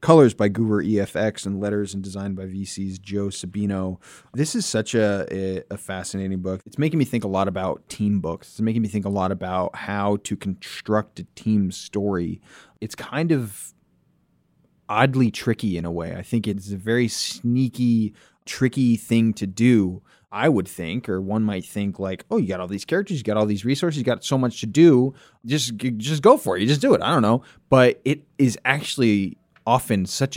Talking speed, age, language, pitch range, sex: 200 wpm, 30-49, English, 95-120 Hz, male